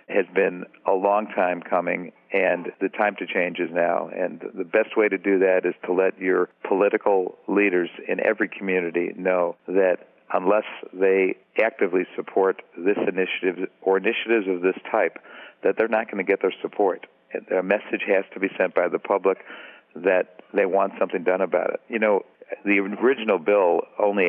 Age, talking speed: 50-69, 180 wpm